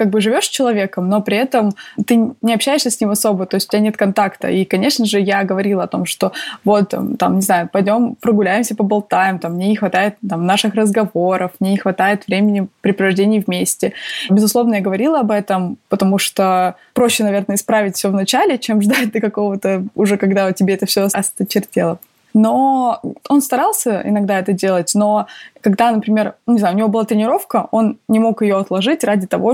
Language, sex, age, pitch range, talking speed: Russian, female, 20-39, 195-225 Hz, 185 wpm